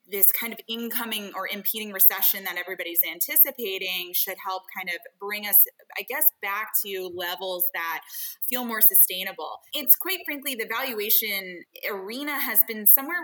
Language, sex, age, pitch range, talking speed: English, female, 20-39, 190-235 Hz, 155 wpm